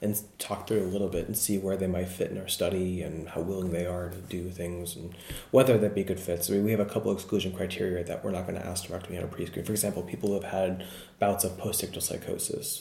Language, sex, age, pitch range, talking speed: English, male, 30-49, 90-105 Hz, 280 wpm